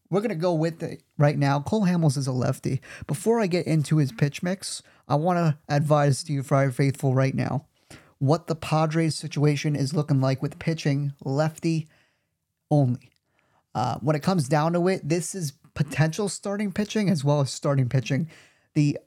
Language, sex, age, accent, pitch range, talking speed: English, male, 30-49, American, 140-160 Hz, 185 wpm